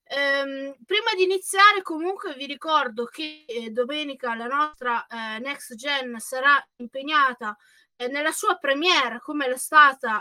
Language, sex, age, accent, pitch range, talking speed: Italian, female, 20-39, native, 235-290 Hz, 135 wpm